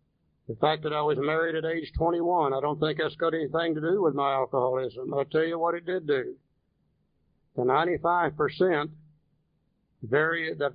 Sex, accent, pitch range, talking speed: male, American, 150-165 Hz, 165 wpm